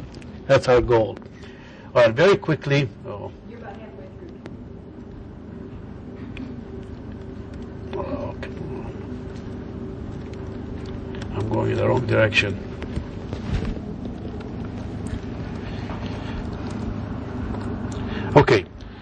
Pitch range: 110-140 Hz